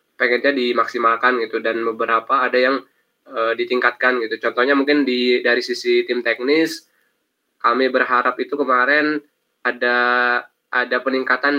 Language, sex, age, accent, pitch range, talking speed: Indonesian, male, 20-39, native, 120-140 Hz, 125 wpm